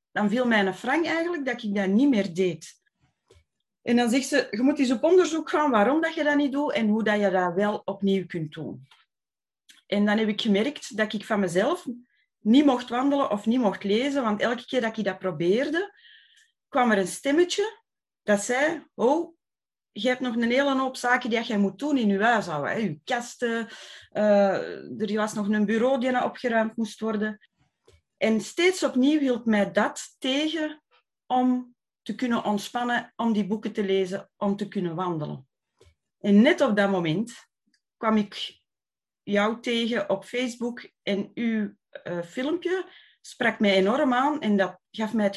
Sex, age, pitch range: female, 30-49, 200-260 Hz